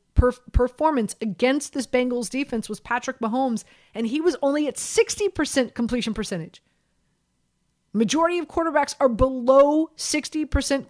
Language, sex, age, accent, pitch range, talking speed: English, female, 30-49, American, 215-280 Hz, 120 wpm